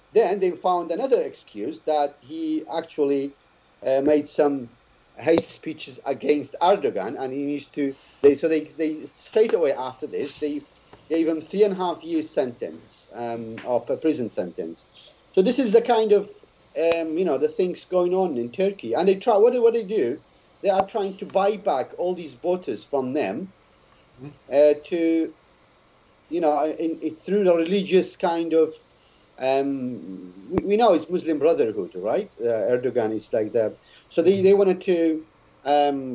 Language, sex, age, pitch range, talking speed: English, male, 50-69, 145-195 Hz, 175 wpm